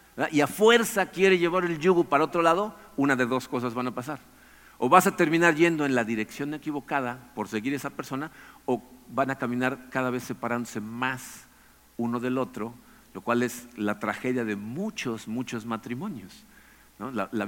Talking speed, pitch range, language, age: 175 wpm, 125-170 Hz, Spanish, 50-69